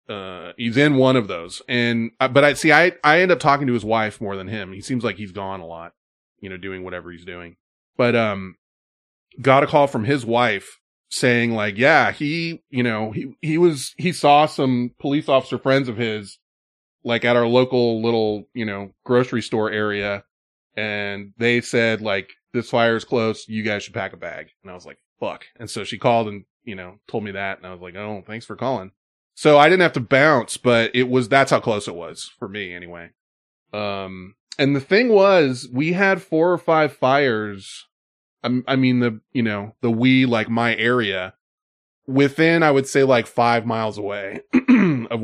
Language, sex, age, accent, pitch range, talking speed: English, male, 20-39, American, 105-140 Hz, 205 wpm